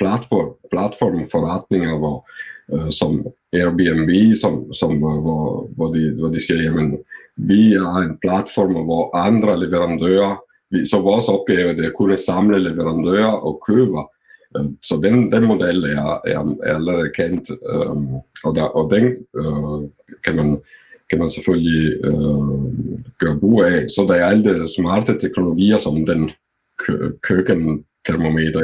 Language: Danish